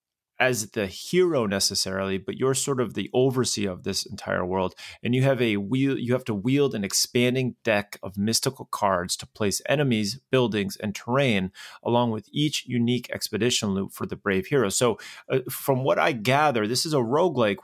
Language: English